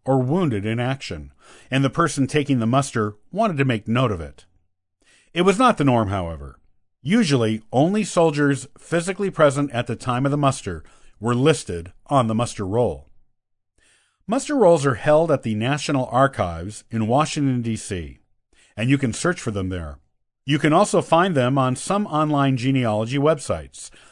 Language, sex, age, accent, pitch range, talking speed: English, male, 50-69, American, 110-150 Hz, 165 wpm